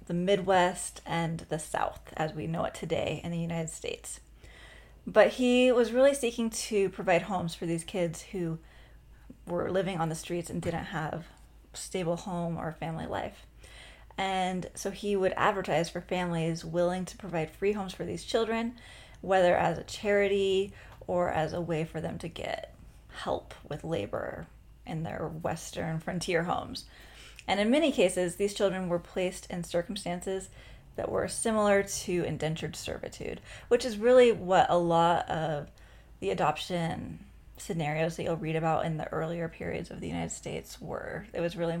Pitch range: 165-200 Hz